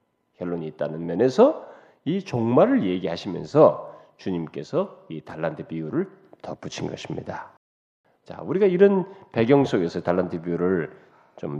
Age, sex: 40-59, male